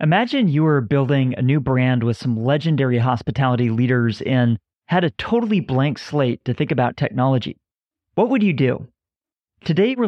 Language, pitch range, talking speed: English, 120-155 Hz, 165 wpm